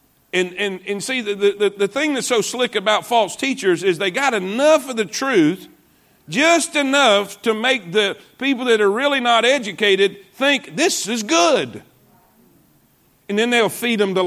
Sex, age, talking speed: male, 50-69, 175 wpm